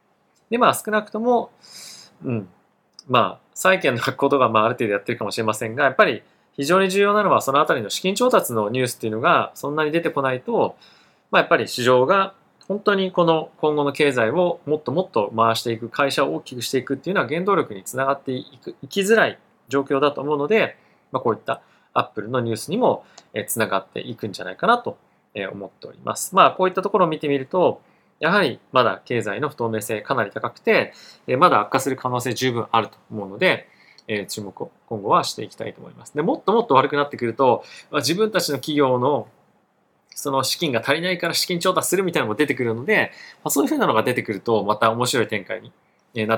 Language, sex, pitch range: Japanese, male, 115-170 Hz